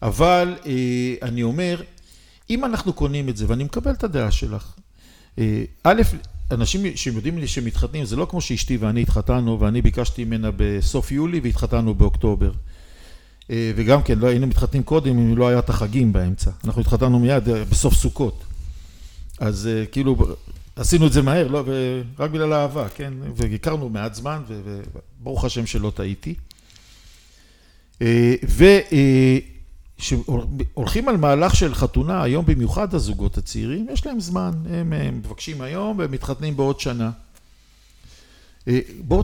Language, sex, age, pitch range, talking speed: Hebrew, male, 50-69, 100-140 Hz, 140 wpm